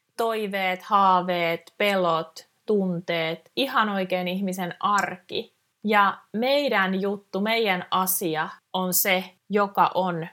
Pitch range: 175-215 Hz